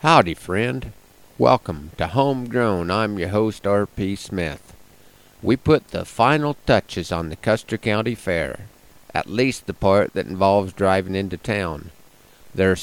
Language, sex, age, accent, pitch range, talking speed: English, male, 50-69, American, 95-115 Hz, 145 wpm